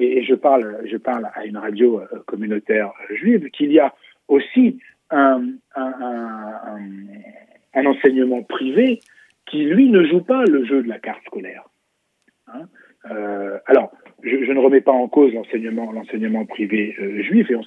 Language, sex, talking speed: French, male, 160 wpm